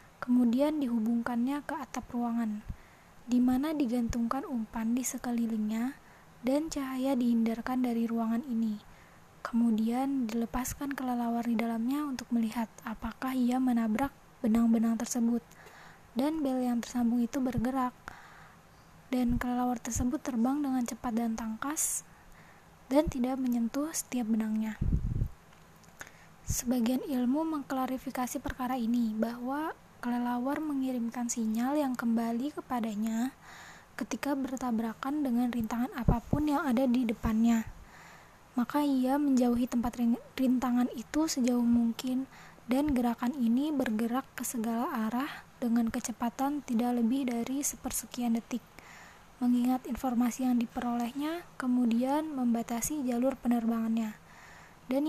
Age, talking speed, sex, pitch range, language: 20-39, 110 wpm, female, 235-265 Hz, Arabic